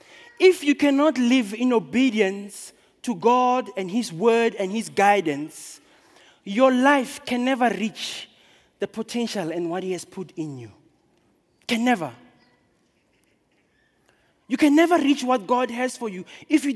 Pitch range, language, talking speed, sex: 195-285 Hz, English, 145 wpm, male